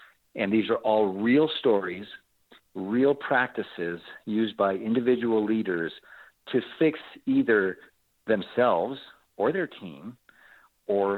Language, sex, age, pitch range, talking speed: English, male, 50-69, 110-160 Hz, 105 wpm